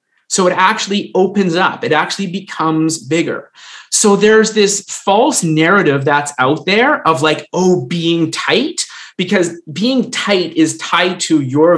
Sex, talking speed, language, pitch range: male, 150 wpm, English, 150-195 Hz